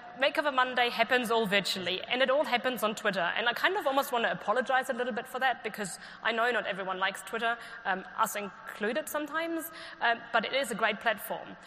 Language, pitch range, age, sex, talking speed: English, 190-240 Hz, 20-39, female, 225 wpm